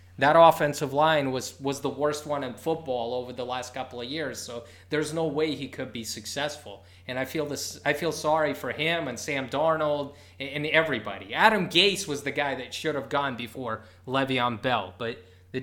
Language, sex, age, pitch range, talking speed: English, male, 20-39, 120-165 Hz, 200 wpm